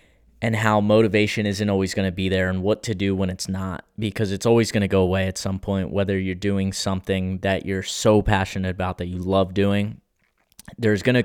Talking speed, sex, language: 225 wpm, male, English